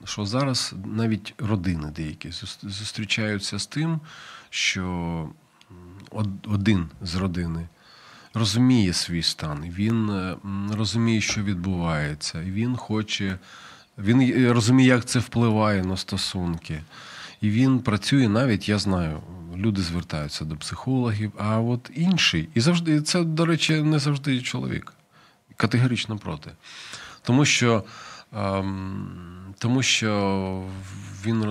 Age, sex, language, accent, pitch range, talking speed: 40-59, male, Ukrainian, native, 95-120 Hz, 110 wpm